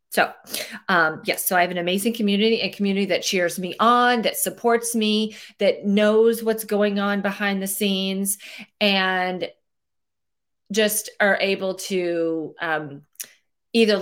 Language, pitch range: English, 170-220 Hz